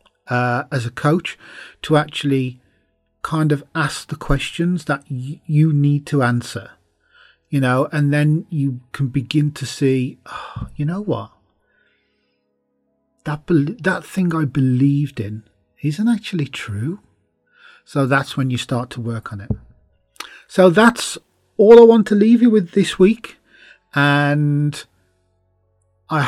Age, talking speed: 40-59, 135 wpm